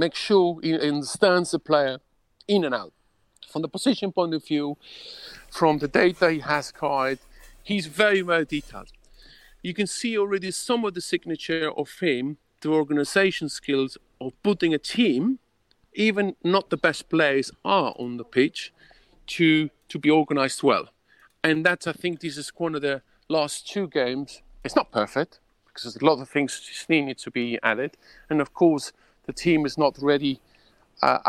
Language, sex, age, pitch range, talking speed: English, male, 50-69, 135-175 Hz, 175 wpm